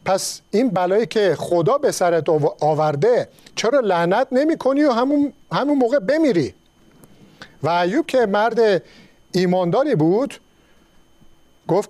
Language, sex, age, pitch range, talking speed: Persian, male, 50-69, 170-245 Hz, 110 wpm